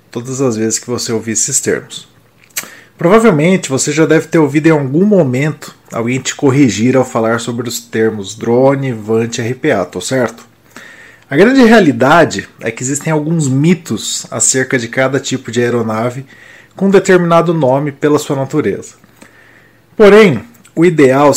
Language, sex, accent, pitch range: Portuguese, male, Brazilian, 125-160 Hz